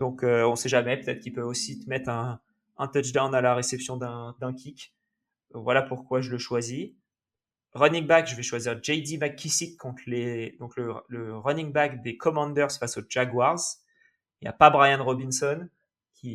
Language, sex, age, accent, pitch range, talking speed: French, male, 20-39, French, 120-145 Hz, 180 wpm